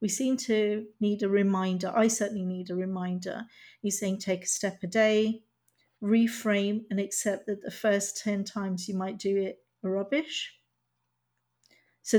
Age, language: 50-69, English